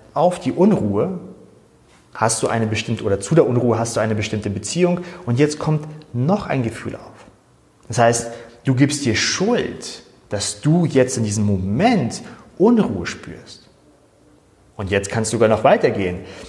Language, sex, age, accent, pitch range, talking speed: German, male, 30-49, German, 110-140 Hz, 160 wpm